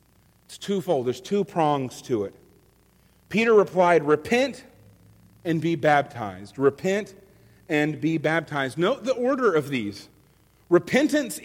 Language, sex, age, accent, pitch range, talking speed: English, male, 40-59, American, 155-235 Hz, 120 wpm